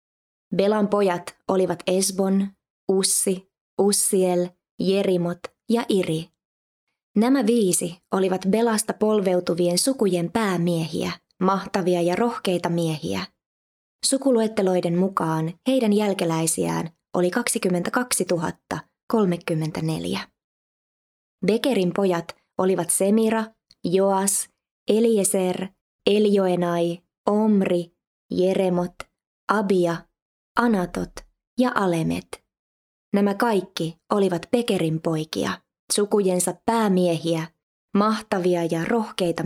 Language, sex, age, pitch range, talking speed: Finnish, female, 20-39, 175-210 Hz, 75 wpm